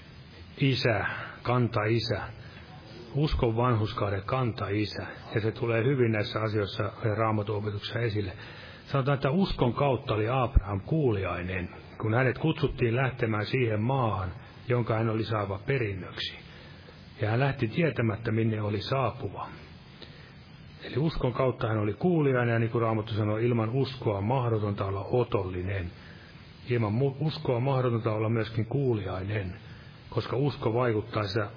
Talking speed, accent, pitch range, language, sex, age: 120 wpm, native, 105-130 Hz, Finnish, male, 30-49